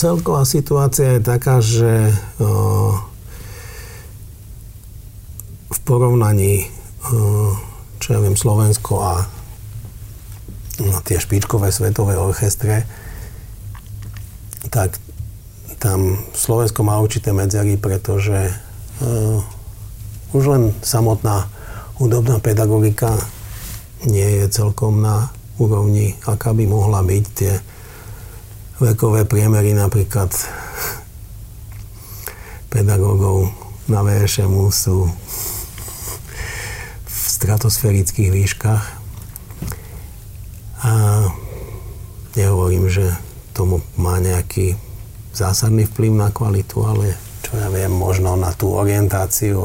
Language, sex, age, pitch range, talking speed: Slovak, male, 50-69, 100-110 Hz, 85 wpm